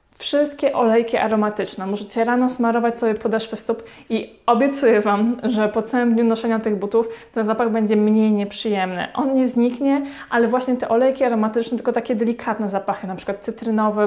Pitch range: 210-240 Hz